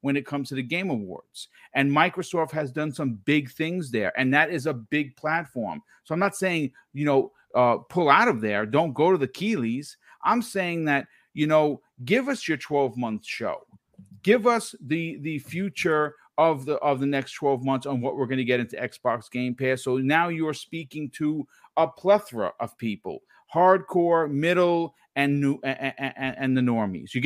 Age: 40-59